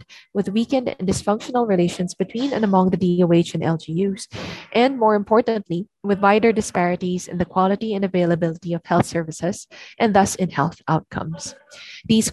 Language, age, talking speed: English, 20-39, 155 wpm